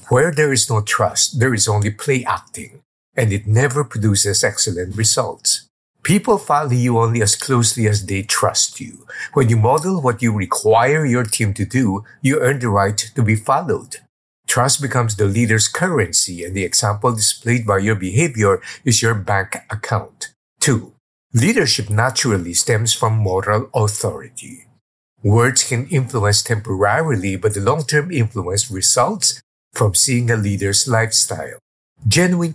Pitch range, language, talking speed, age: 105-125 Hz, English, 150 wpm, 50-69